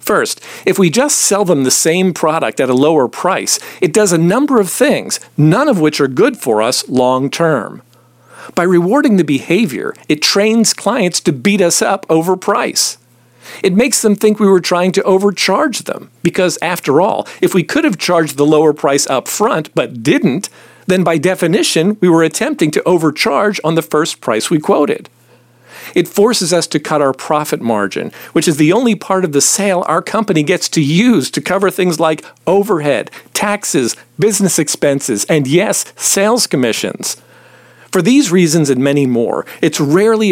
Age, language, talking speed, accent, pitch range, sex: 50-69, English, 180 wpm, American, 150-200 Hz, male